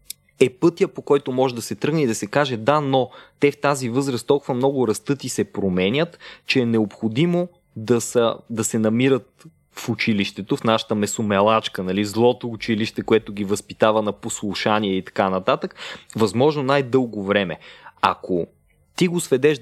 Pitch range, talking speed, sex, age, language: 105-135 Hz, 170 wpm, male, 20-39, Bulgarian